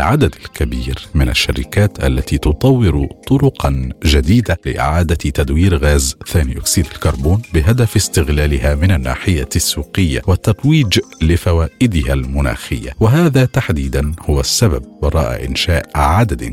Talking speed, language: 105 wpm, Arabic